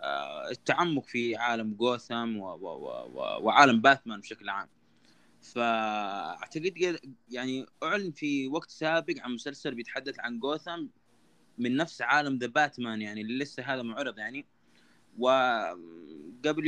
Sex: male